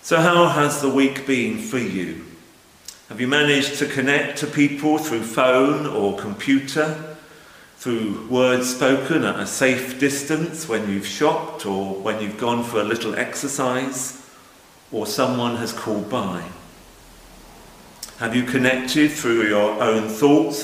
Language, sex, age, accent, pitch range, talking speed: English, male, 50-69, British, 105-140 Hz, 140 wpm